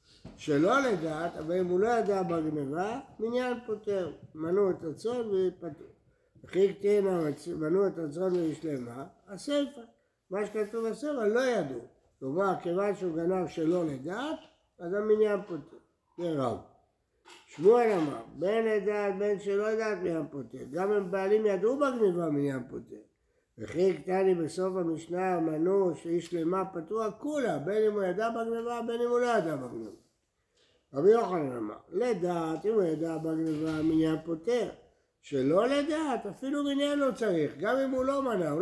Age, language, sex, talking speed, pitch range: 60-79, Hebrew, male, 145 wpm, 165-220 Hz